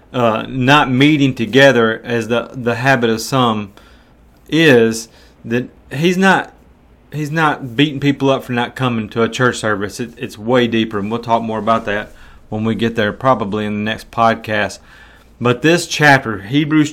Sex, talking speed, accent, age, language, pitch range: male, 175 wpm, American, 30-49, English, 110-130 Hz